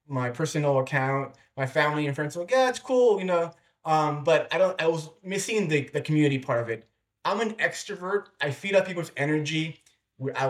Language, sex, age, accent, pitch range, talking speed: English, male, 20-39, American, 130-155 Hz, 210 wpm